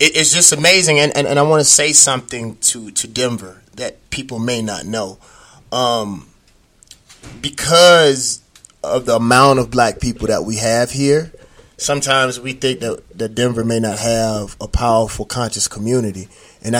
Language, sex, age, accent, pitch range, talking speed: English, male, 30-49, American, 115-145 Hz, 160 wpm